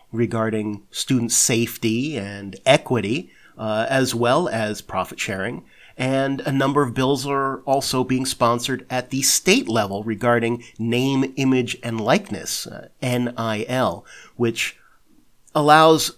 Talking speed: 120 wpm